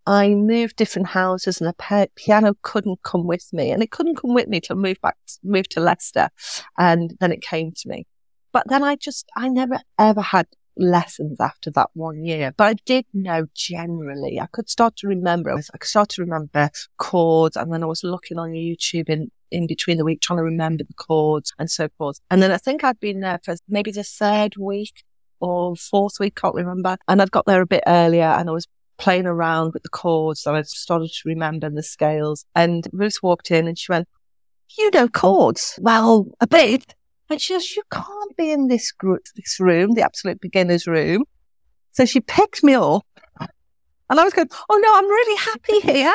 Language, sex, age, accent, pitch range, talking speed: English, female, 40-59, British, 165-245 Hz, 210 wpm